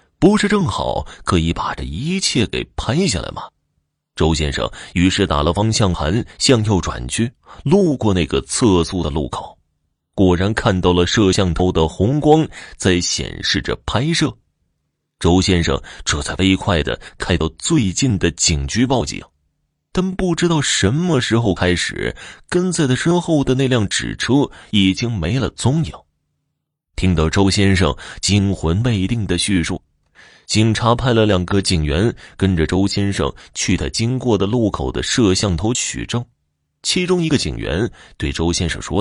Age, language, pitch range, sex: 20-39, Chinese, 85-115 Hz, male